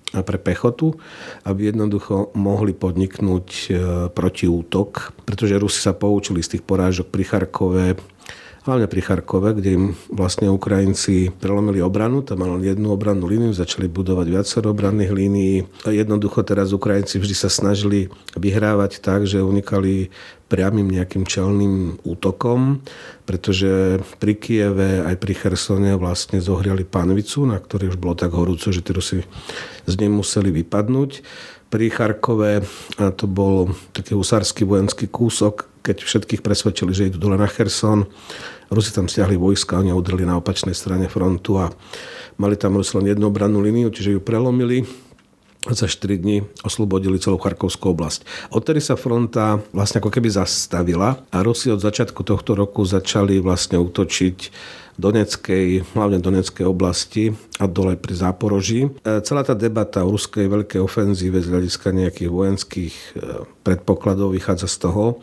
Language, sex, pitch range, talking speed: Slovak, male, 95-105 Hz, 140 wpm